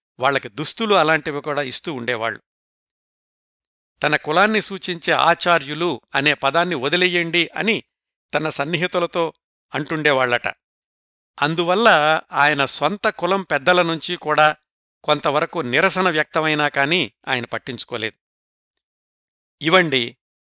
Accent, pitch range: native, 140-180 Hz